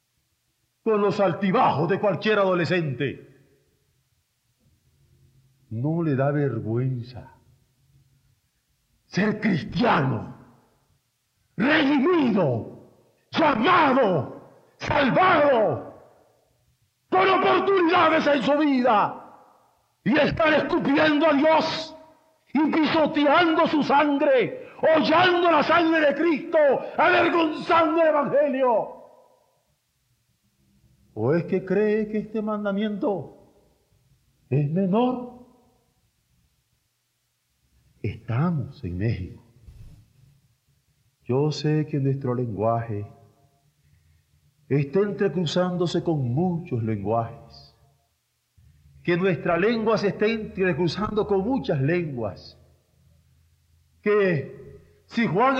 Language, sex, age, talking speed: Spanish, male, 50-69, 75 wpm